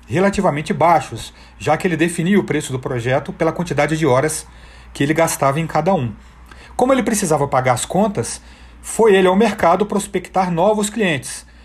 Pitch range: 120-175 Hz